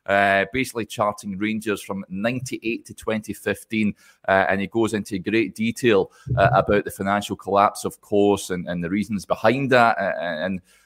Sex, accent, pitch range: male, British, 105-135 Hz